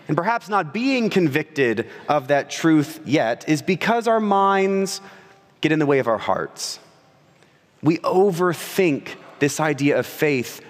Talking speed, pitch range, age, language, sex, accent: 145 wpm, 120-160 Hz, 30-49, English, male, American